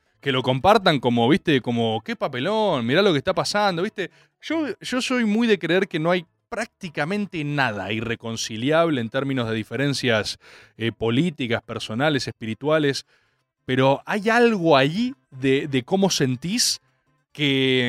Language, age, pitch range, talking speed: Spanish, 20-39, 130-195 Hz, 145 wpm